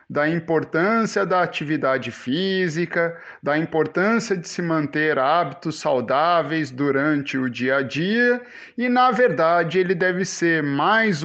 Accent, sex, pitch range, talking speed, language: Brazilian, male, 160-215 Hz, 130 wpm, Portuguese